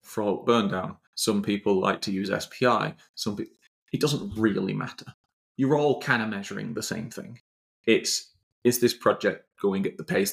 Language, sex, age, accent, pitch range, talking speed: English, male, 30-49, British, 100-125 Hz, 175 wpm